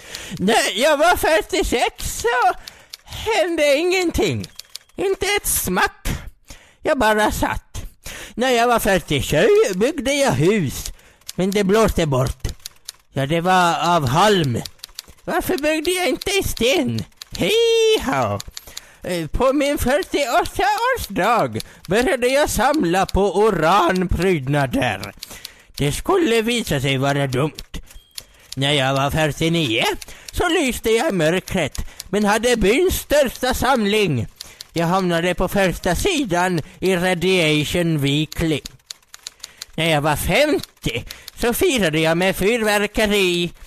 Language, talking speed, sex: Swedish, 110 wpm, male